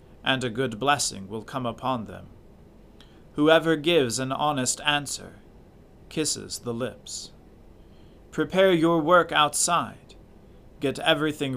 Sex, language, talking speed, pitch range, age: male, English, 115 wpm, 110-145 Hz, 40-59